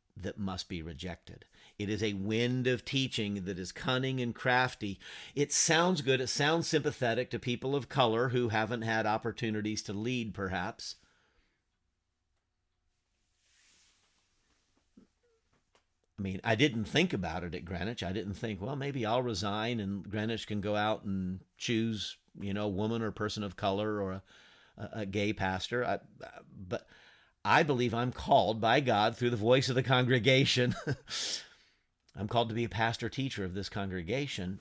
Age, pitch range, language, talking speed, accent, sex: 50-69, 100-125 Hz, English, 165 wpm, American, male